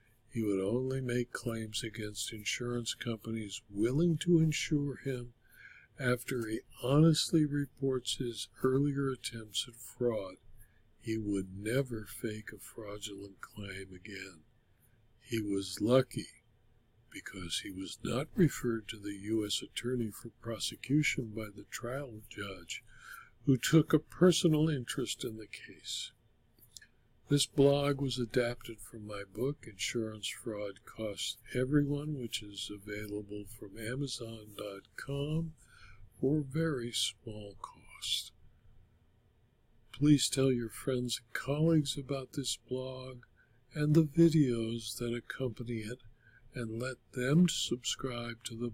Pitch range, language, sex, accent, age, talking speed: 110-130 Hz, English, male, American, 60-79, 120 wpm